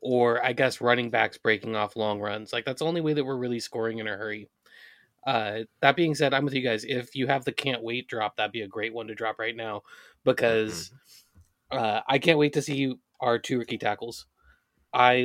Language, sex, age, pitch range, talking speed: English, male, 20-39, 115-140 Hz, 225 wpm